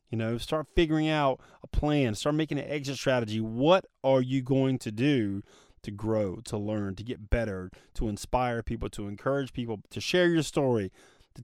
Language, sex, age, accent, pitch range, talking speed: English, male, 30-49, American, 115-160 Hz, 190 wpm